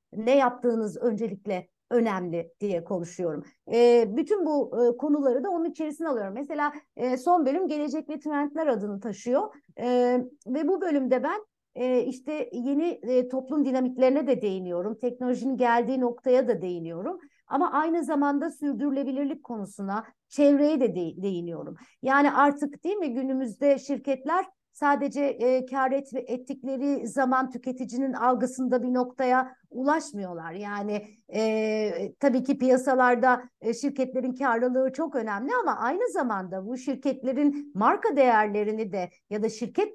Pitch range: 230-290 Hz